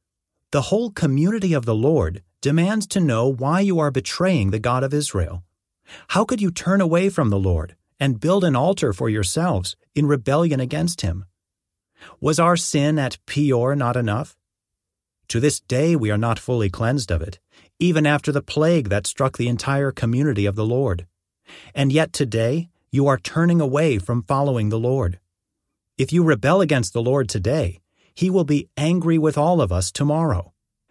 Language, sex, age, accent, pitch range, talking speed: English, male, 40-59, American, 105-155 Hz, 175 wpm